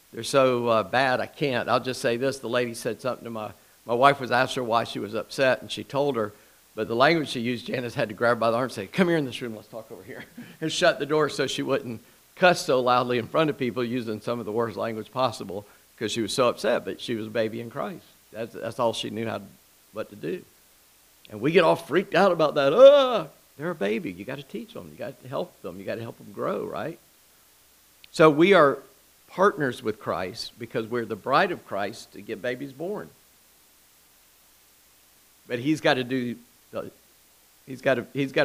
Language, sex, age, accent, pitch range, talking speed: English, male, 50-69, American, 115-140 Hz, 235 wpm